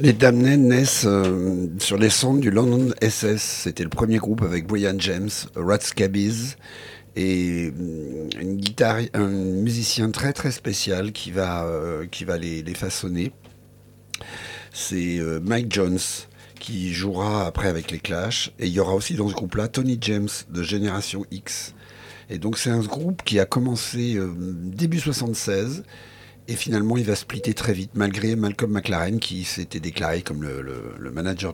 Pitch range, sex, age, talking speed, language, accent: 90-115 Hz, male, 60-79, 165 wpm, French, French